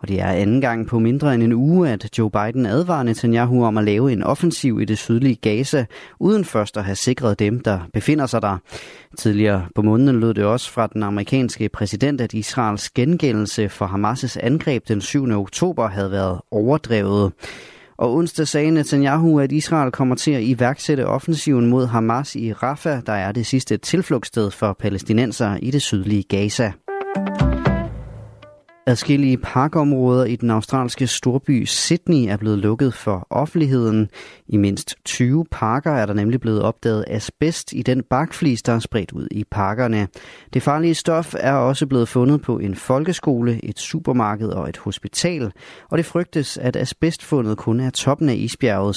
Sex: male